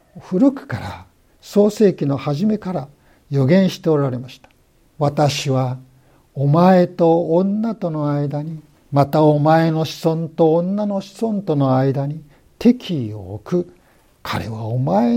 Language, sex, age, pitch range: Japanese, male, 60-79, 130-200 Hz